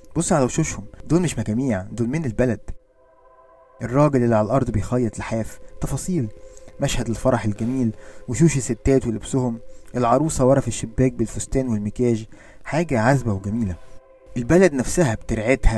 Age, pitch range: 20-39, 110-135 Hz